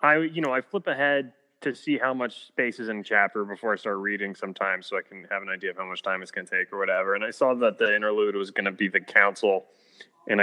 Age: 20-39